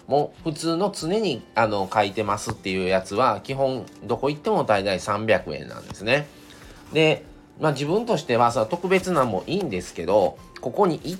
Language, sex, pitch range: Japanese, male, 105-155 Hz